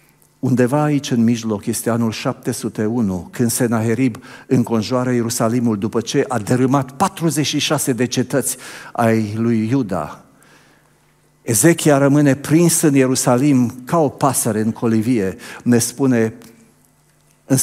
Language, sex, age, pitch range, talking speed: Romanian, male, 50-69, 115-145 Hz, 115 wpm